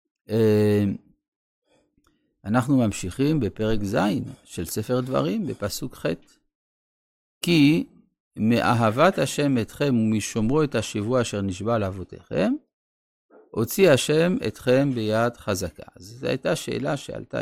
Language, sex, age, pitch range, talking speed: Hebrew, male, 50-69, 110-150 Hz, 95 wpm